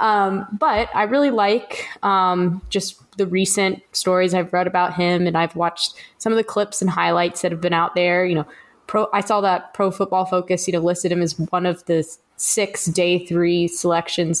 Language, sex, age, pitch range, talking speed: English, female, 20-39, 175-205 Hz, 205 wpm